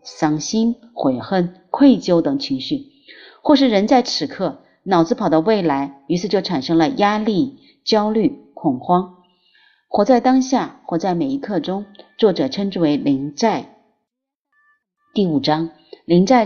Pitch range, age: 160-240 Hz, 30-49